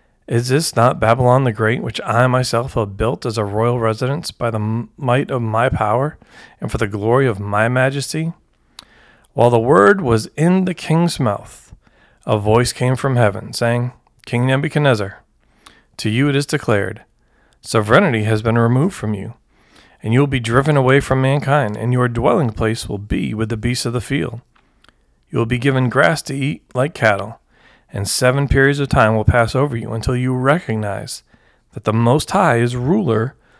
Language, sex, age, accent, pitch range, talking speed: English, male, 40-59, American, 115-135 Hz, 180 wpm